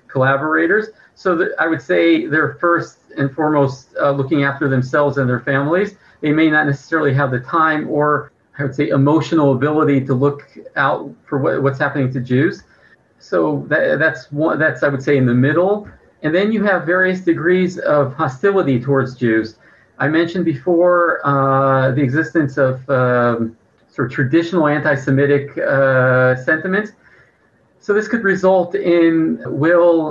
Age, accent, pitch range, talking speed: 40-59, American, 135-170 Hz, 160 wpm